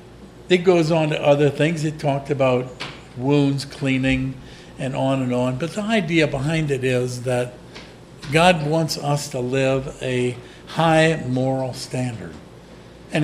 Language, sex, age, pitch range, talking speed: English, male, 50-69, 135-170 Hz, 145 wpm